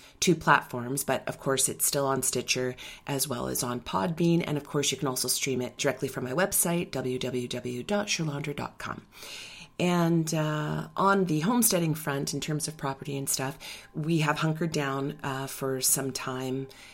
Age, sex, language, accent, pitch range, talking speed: 30-49, female, English, American, 130-155 Hz, 165 wpm